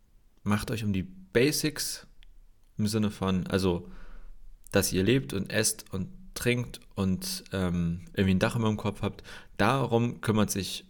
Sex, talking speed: male, 155 wpm